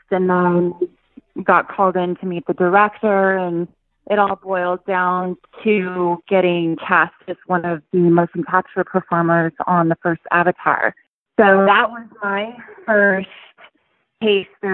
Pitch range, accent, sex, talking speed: 170-190 Hz, American, female, 140 wpm